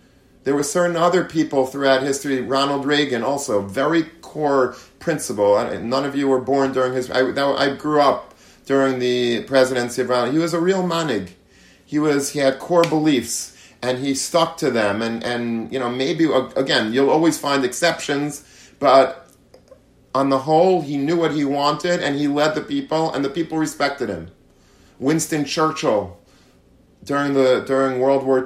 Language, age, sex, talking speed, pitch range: English, 40-59, male, 175 wpm, 130-150 Hz